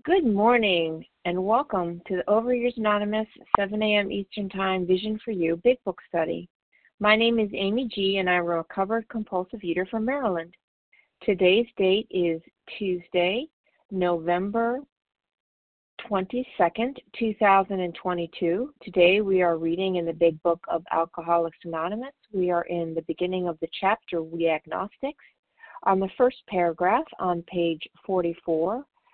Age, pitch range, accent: 40-59, 175-225 Hz, American